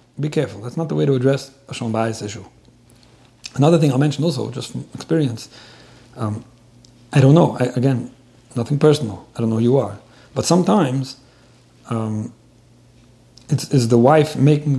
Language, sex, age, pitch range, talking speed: English, male, 40-59, 125-150 Hz, 170 wpm